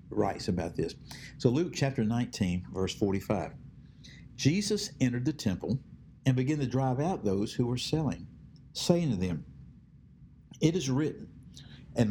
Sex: male